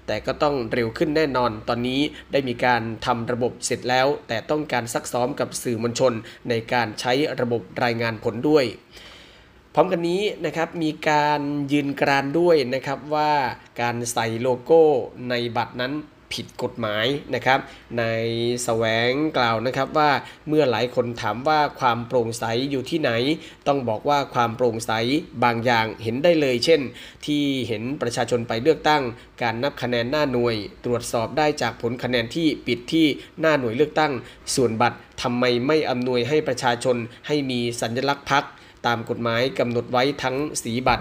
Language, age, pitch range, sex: Thai, 20-39, 115-145 Hz, male